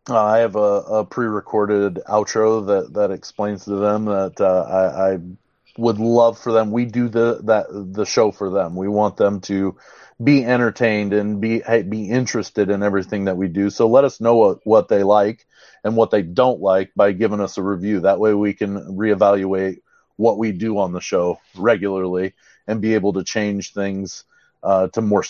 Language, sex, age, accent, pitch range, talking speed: English, male, 30-49, American, 100-115 Hz, 195 wpm